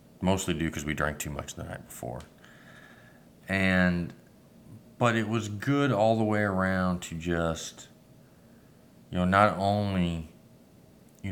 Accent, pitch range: American, 80-95 Hz